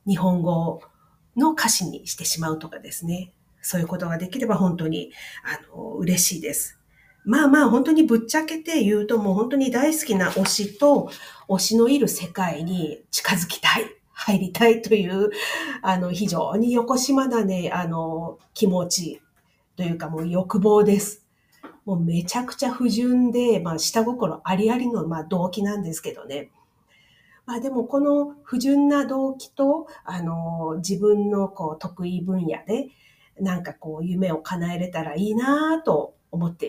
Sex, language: female, Japanese